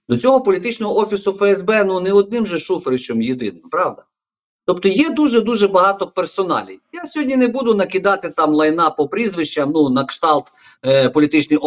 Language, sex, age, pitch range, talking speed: Ukrainian, male, 50-69, 150-205 Hz, 165 wpm